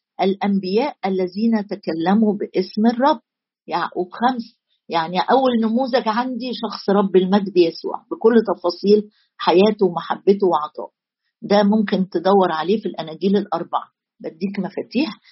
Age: 50-69